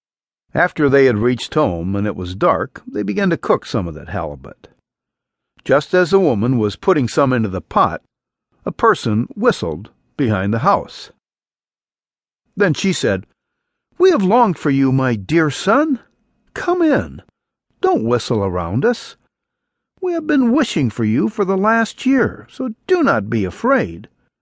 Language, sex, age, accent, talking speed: English, male, 60-79, American, 160 wpm